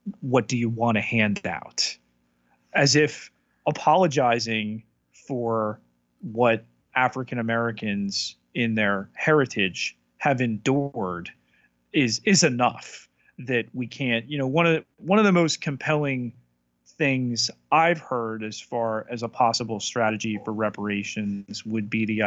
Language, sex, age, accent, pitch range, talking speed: English, male, 30-49, American, 100-125 Hz, 130 wpm